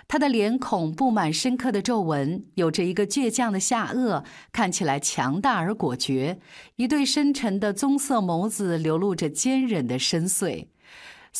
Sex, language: female, Chinese